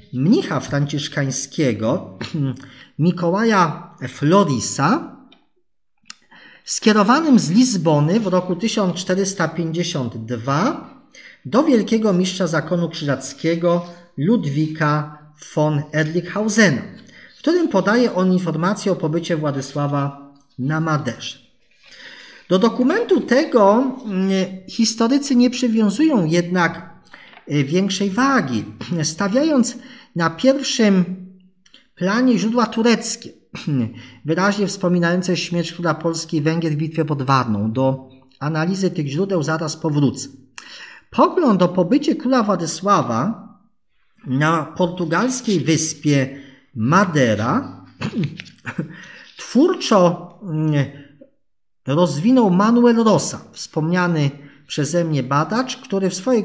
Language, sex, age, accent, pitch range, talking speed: Polish, male, 40-59, native, 150-220 Hz, 85 wpm